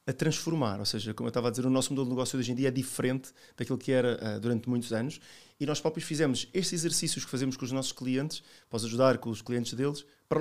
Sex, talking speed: male, 255 wpm